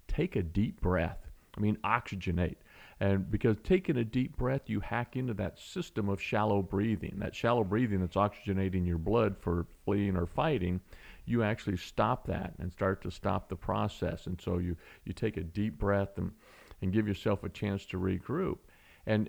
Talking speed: 185 wpm